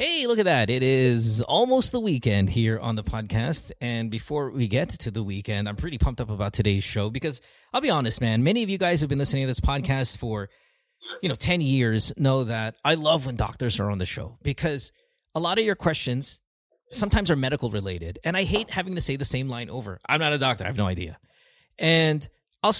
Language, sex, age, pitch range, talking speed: English, male, 30-49, 110-150 Hz, 230 wpm